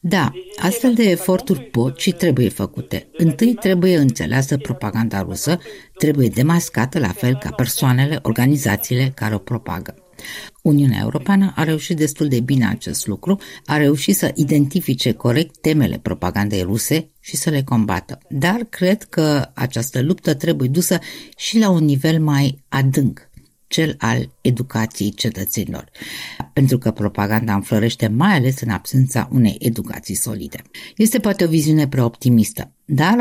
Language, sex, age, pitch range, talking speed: Romanian, female, 50-69, 120-165 Hz, 140 wpm